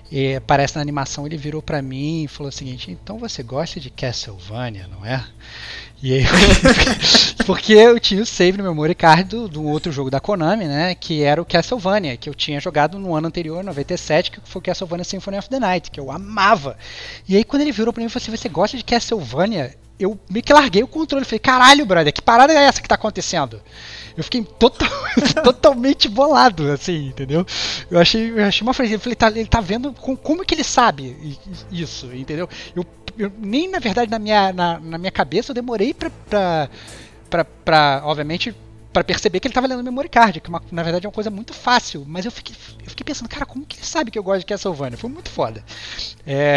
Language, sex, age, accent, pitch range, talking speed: Portuguese, male, 20-39, Brazilian, 140-215 Hz, 210 wpm